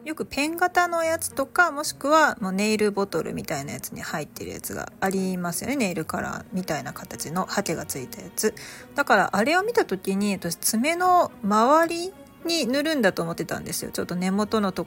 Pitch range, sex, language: 195-295 Hz, female, Japanese